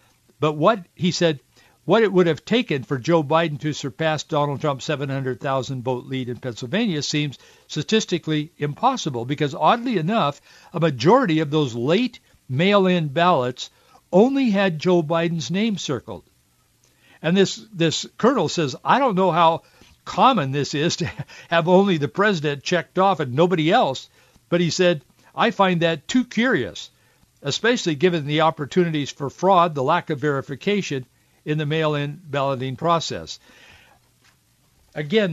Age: 60-79